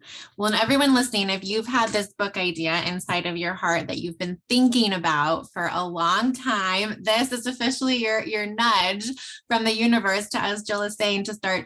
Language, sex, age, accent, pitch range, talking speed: English, female, 20-39, American, 185-235 Hz, 200 wpm